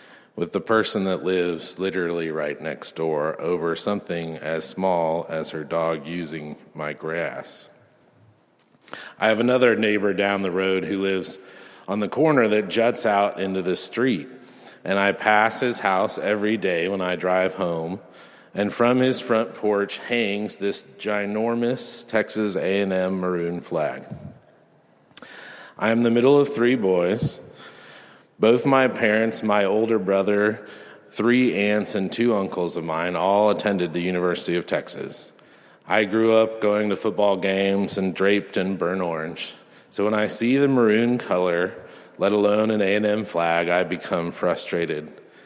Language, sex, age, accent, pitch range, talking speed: English, male, 40-59, American, 90-110 Hz, 150 wpm